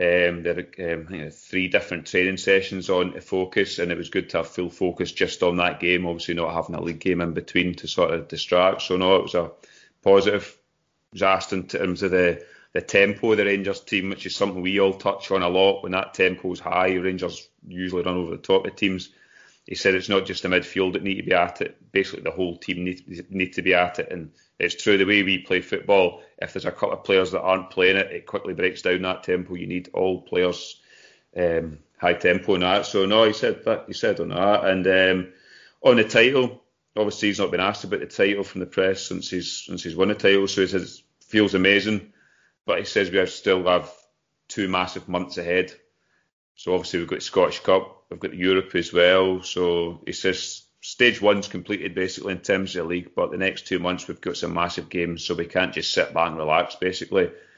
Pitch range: 90-95 Hz